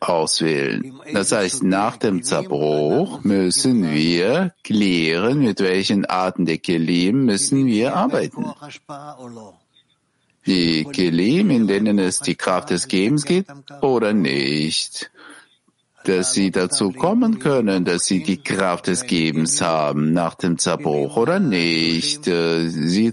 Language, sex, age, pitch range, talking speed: German, male, 50-69, 85-130 Hz, 120 wpm